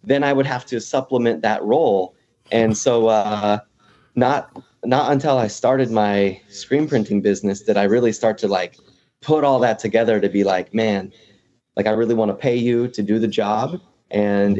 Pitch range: 105-120 Hz